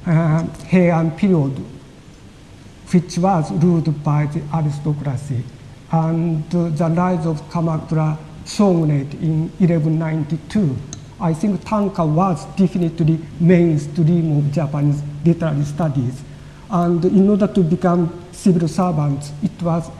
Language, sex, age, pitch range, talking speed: English, male, 50-69, 150-185 Hz, 110 wpm